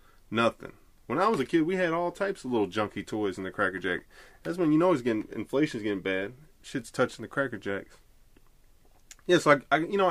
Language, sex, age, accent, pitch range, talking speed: English, male, 20-39, American, 90-125 Hz, 225 wpm